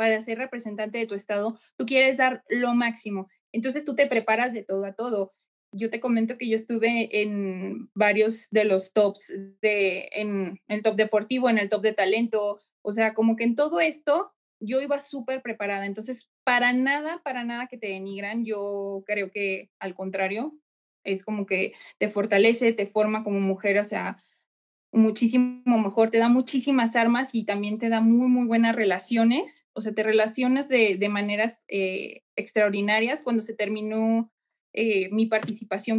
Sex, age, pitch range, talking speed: female, 20-39, 205-240 Hz, 175 wpm